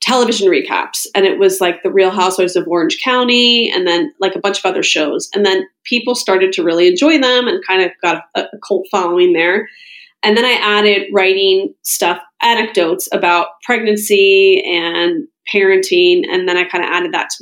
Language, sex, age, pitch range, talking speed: English, female, 30-49, 185-295 Hz, 190 wpm